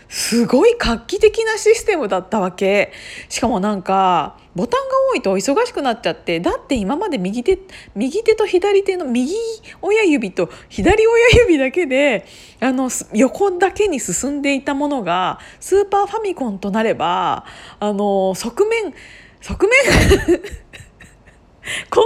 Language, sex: Japanese, female